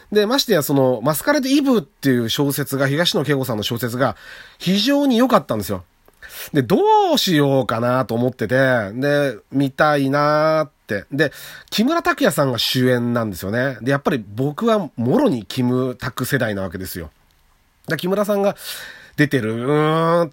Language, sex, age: Japanese, male, 40-59